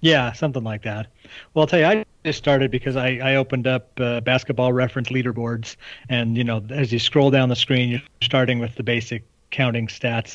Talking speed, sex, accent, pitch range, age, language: 210 wpm, male, American, 115-140 Hz, 40-59, English